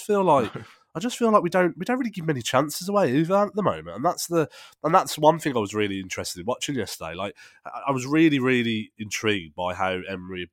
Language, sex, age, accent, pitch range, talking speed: English, male, 20-39, British, 95-130 Hz, 240 wpm